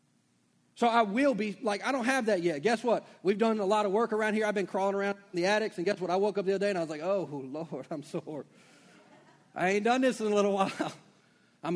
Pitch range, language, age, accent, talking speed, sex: 135-190 Hz, English, 40-59, American, 270 wpm, male